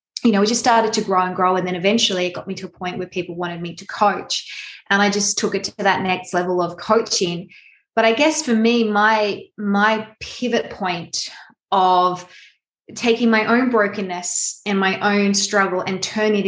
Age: 20-39